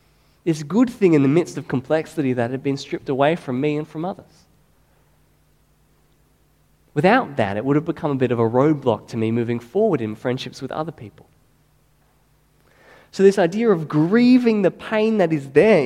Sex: male